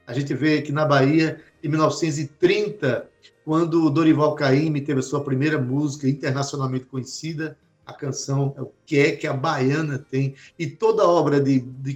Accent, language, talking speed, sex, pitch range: Brazilian, Portuguese, 170 wpm, male, 130-165 Hz